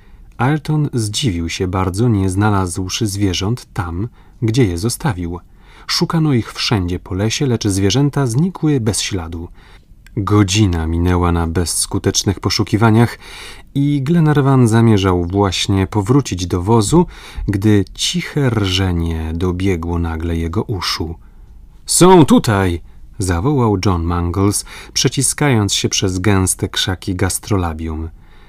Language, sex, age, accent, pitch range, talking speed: Polish, male, 30-49, native, 90-115 Hz, 105 wpm